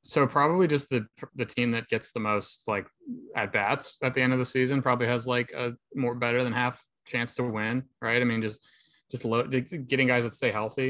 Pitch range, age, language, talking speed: 110-130 Hz, 20-39, English, 220 wpm